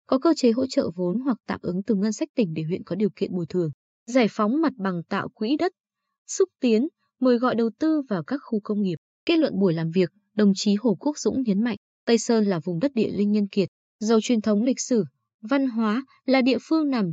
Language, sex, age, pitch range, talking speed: Vietnamese, female, 20-39, 195-255 Hz, 245 wpm